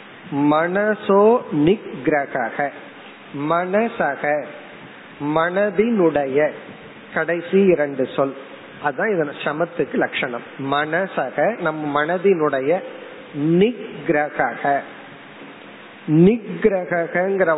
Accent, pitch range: native, 145-190 Hz